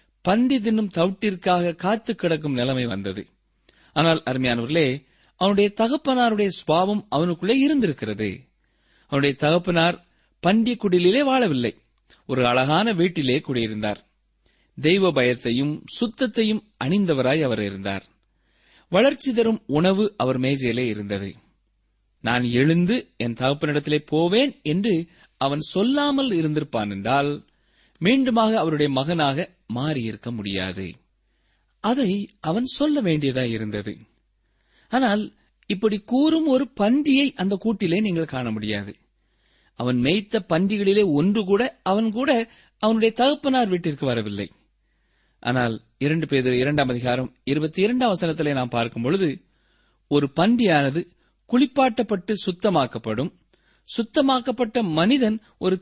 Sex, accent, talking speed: male, native, 100 wpm